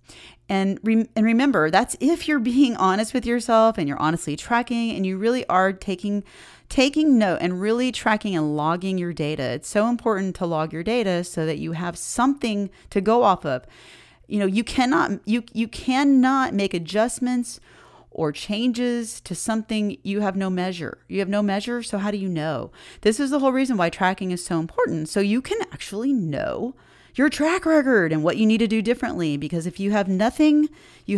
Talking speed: 195 wpm